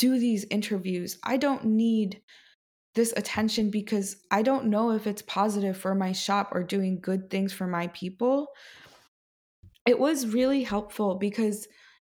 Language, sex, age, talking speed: English, female, 20-39, 150 wpm